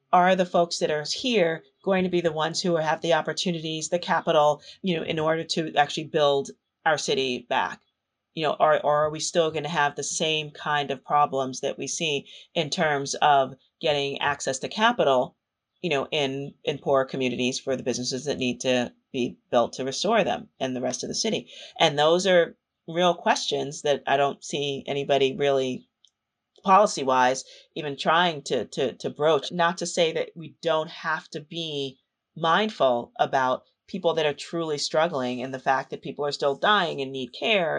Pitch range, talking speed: 140-175 Hz, 190 wpm